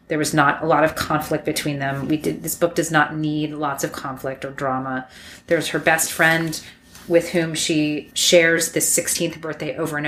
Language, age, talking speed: English, 30-49, 200 wpm